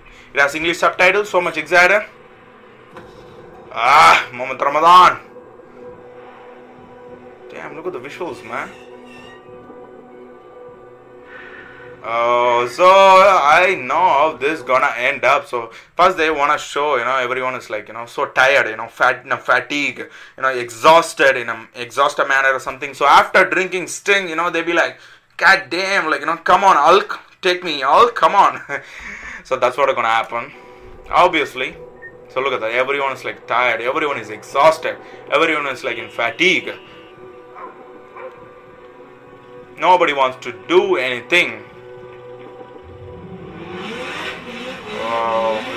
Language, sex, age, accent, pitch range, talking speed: English, male, 20-39, Indian, 125-180 Hz, 140 wpm